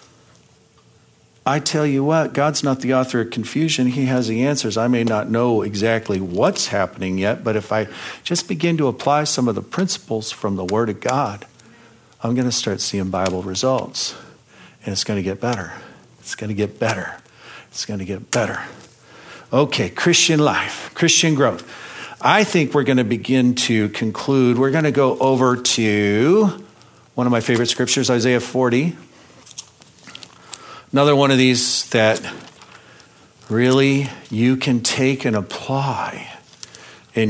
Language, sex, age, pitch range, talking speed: English, male, 50-69, 105-135 Hz, 160 wpm